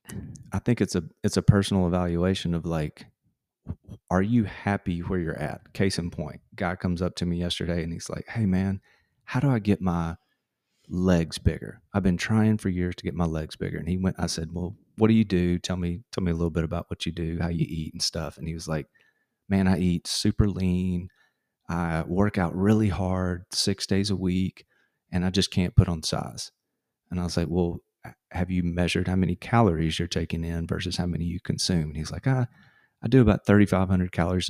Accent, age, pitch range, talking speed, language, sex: American, 30-49, 85-100 Hz, 220 wpm, English, male